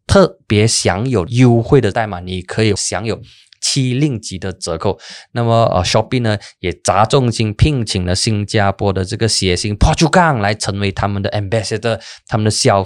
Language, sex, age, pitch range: Chinese, male, 20-39, 100-125 Hz